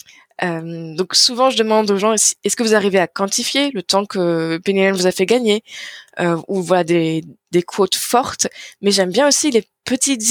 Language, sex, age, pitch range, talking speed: French, female, 20-39, 190-240 Hz, 200 wpm